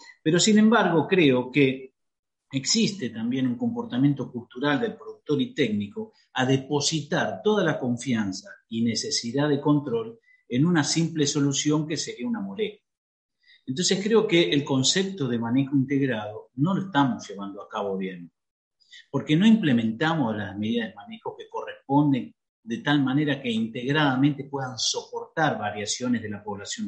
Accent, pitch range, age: Argentinian, 125-210 Hz, 50-69